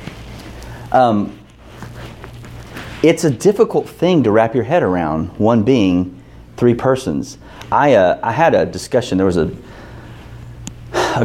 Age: 30-49